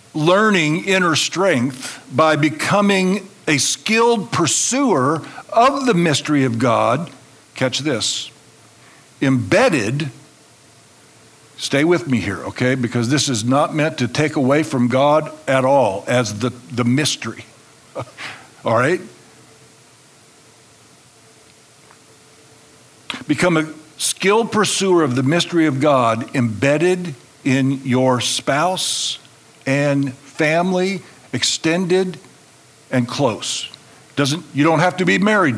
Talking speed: 110 wpm